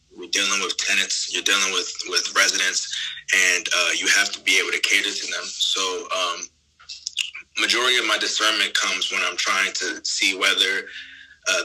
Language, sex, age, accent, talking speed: English, male, 20-39, American, 175 wpm